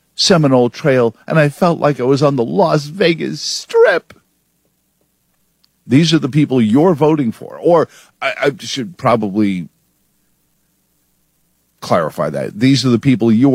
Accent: American